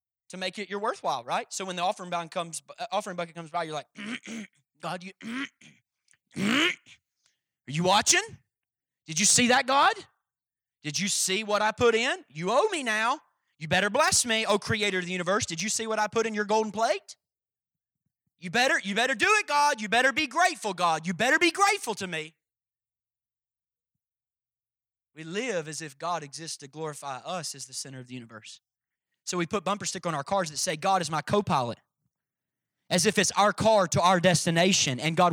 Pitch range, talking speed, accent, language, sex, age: 160-220 Hz, 195 wpm, American, English, male, 30-49